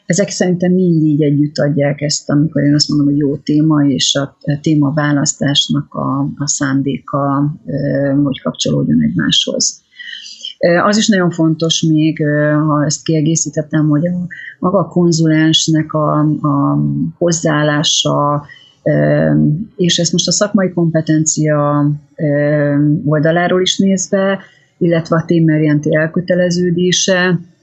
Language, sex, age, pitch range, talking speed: Hungarian, female, 30-49, 150-170 Hz, 115 wpm